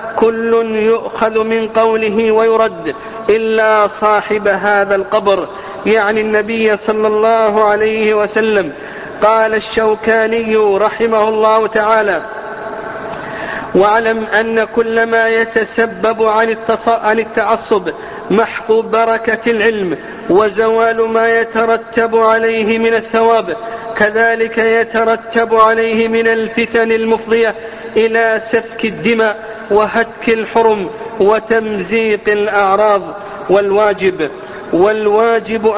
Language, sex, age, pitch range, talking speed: Arabic, male, 50-69, 215-225 Hz, 90 wpm